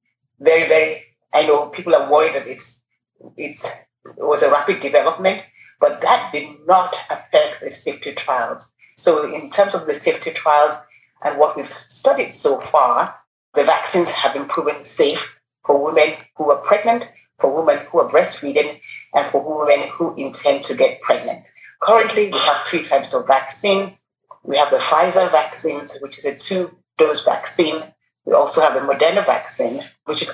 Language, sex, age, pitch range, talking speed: English, female, 30-49, 140-210 Hz, 170 wpm